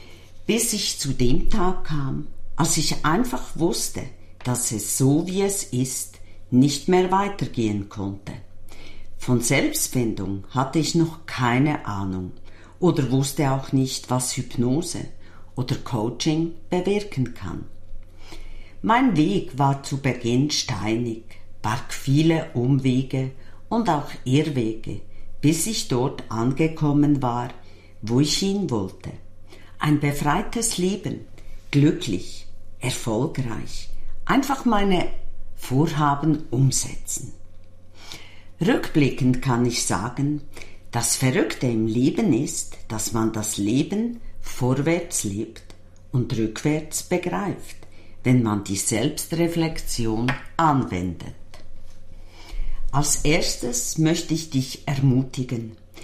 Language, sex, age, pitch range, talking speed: German, female, 50-69, 95-150 Hz, 105 wpm